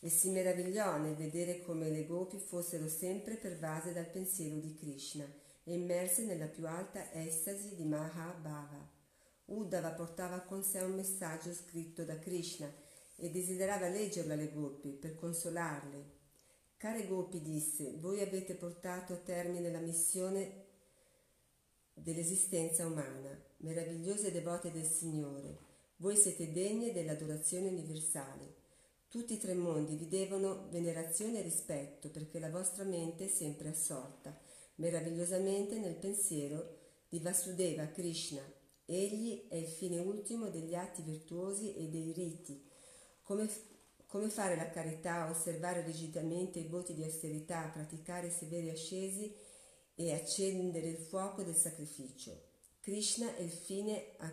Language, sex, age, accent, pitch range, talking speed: Italian, female, 40-59, native, 160-190 Hz, 130 wpm